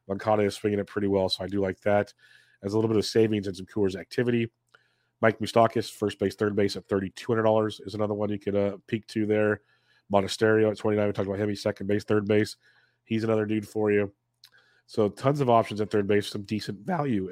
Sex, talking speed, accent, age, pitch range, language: male, 225 wpm, American, 30-49, 100-115 Hz, English